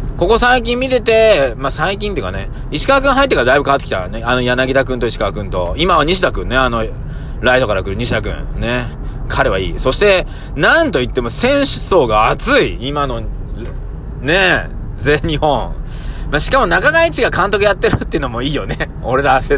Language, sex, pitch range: Japanese, male, 105-145 Hz